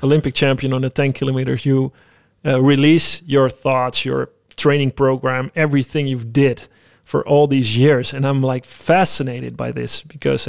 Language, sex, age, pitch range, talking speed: Dutch, male, 30-49, 130-150 Hz, 155 wpm